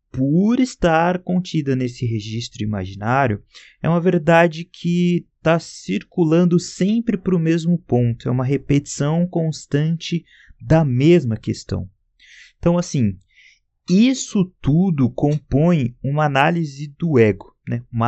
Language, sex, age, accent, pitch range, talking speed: Portuguese, male, 30-49, Brazilian, 115-165 Hz, 115 wpm